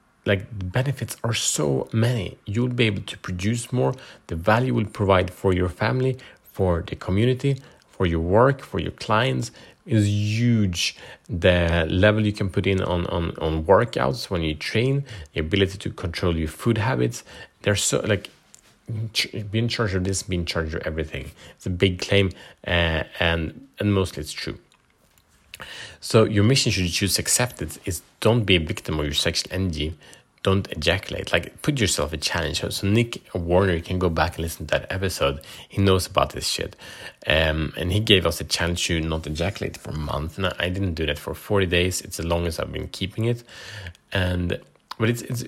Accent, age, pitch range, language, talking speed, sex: Norwegian, 30-49, 85-105 Hz, Swedish, 195 wpm, male